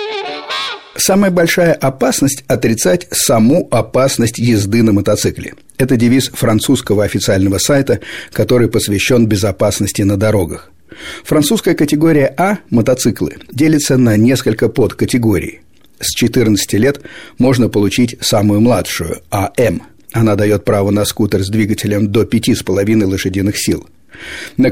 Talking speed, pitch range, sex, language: 115 wpm, 105-135 Hz, male, Russian